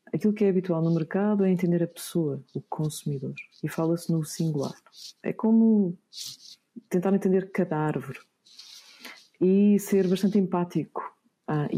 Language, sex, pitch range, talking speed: Portuguese, female, 160-200 Hz, 140 wpm